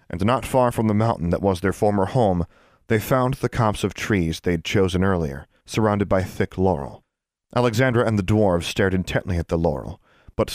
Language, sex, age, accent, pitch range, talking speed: English, male, 30-49, American, 90-110 Hz, 195 wpm